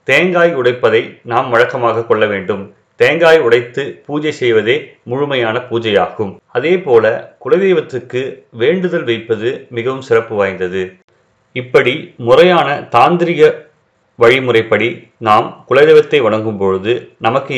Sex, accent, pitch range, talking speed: male, native, 115-180 Hz, 95 wpm